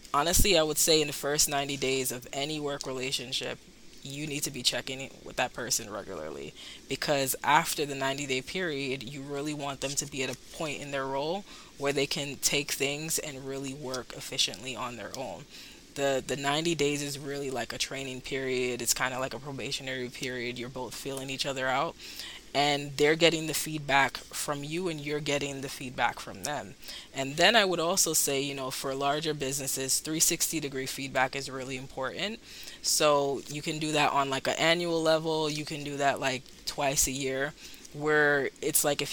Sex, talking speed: female, 200 wpm